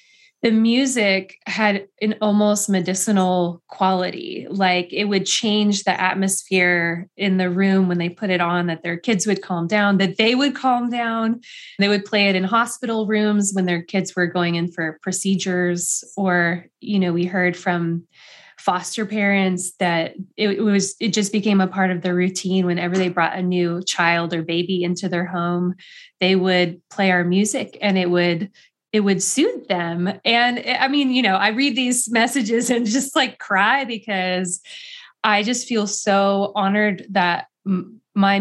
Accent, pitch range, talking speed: American, 180-215 Hz, 170 wpm